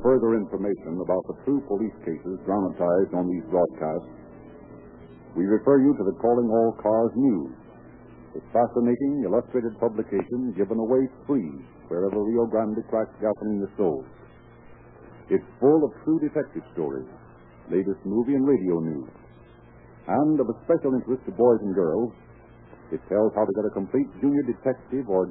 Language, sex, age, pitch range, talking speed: English, male, 60-79, 100-130 Hz, 155 wpm